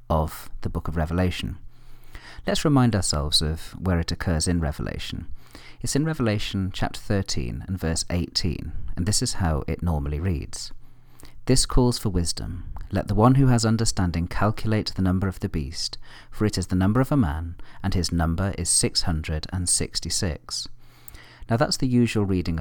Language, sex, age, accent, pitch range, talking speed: English, male, 40-59, British, 85-115 Hz, 165 wpm